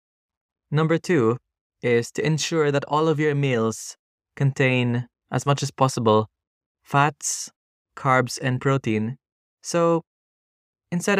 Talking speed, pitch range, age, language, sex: 115 wpm, 110-145 Hz, 20-39, Italian, male